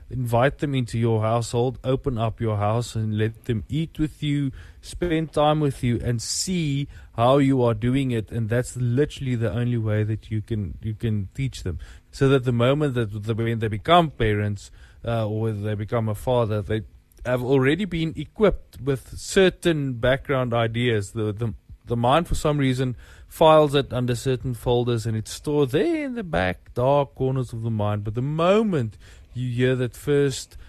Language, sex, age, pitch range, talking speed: English, male, 20-39, 105-130 Hz, 185 wpm